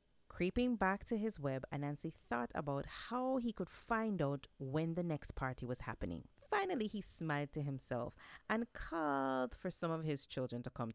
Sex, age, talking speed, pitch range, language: female, 40-59, 180 wpm, 140-220 Hz, English